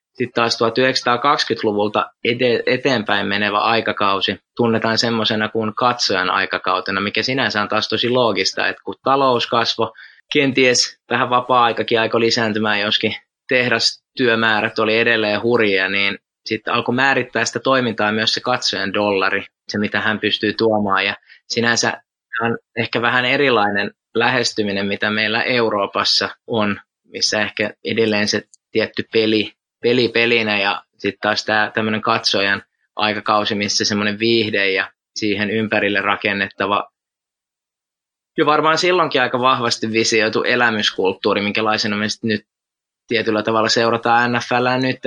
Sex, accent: male, native